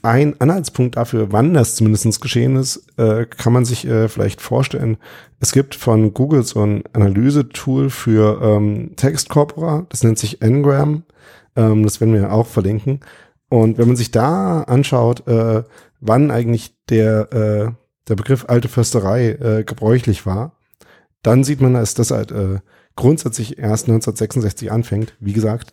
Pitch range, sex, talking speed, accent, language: 105-125 Hz, male, 135 wpm, German, German